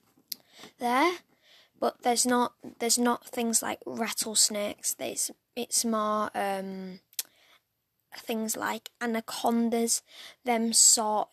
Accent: British